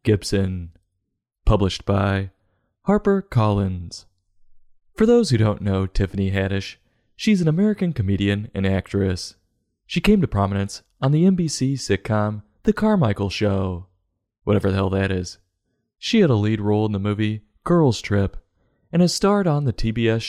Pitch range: 100-130 Hz